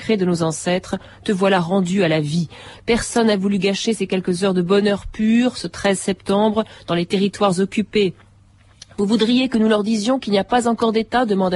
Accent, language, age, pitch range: French, French, 40-59, 170-220 Hz